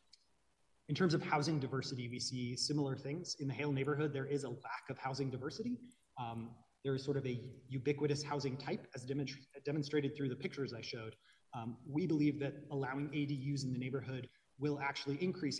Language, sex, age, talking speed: English, male, 30-49, 185 wpm